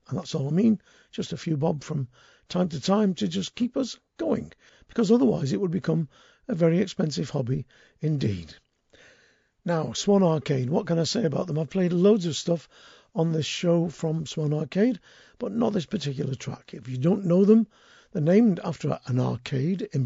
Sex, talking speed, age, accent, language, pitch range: male, 190 wpm, 50-69, British, English, 145-190 Hz